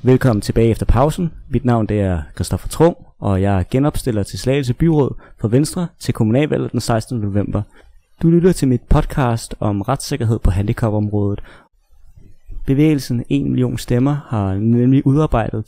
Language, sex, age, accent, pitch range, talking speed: Danish, male, 30-49, native, 105-140 Hz, 150 wpm